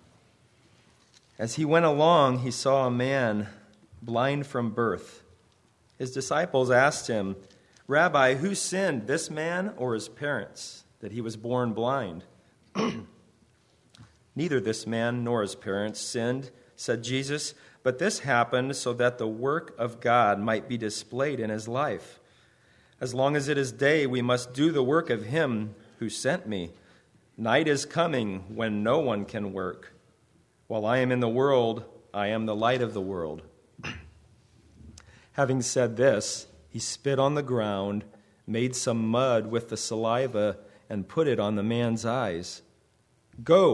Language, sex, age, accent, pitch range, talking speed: English, male, 40-59, American, 110-130 Hz, 150 wpm